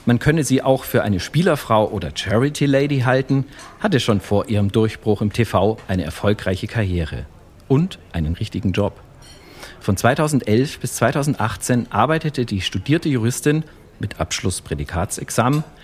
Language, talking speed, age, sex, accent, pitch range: German, 130 wpm, 40-59, male, German, 100-135 Hz